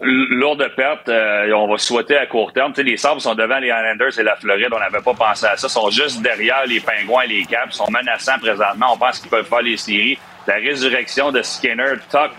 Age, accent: 30-49, Canadian